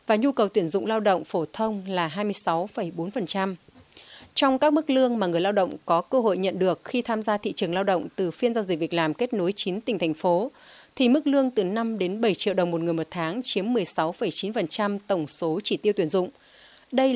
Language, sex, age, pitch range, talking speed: Vietnamese, female, 30-49, 180-230 Hz, 225 wpm